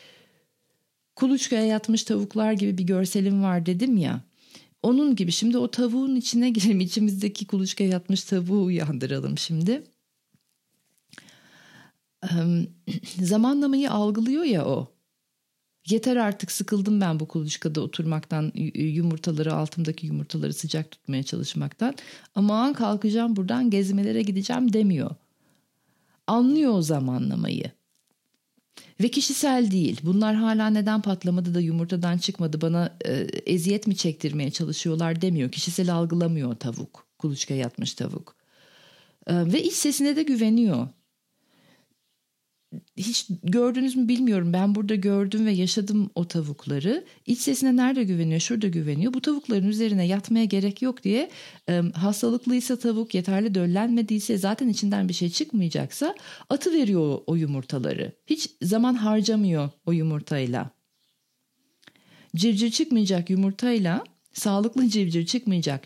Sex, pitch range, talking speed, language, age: female, 170-230 Hz, 110 wpm, Turkish, 40-59